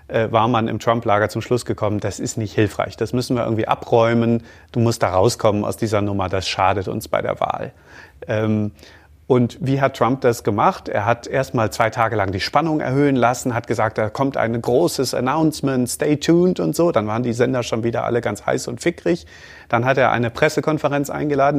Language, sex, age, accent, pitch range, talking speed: German, male, 30-49, German, 115-150 Hz, 210 wpm